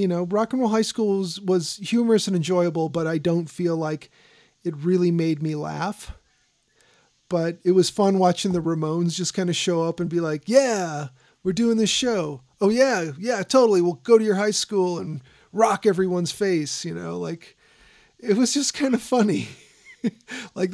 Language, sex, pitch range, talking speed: English, male, 165-205 Hz, 190 wpm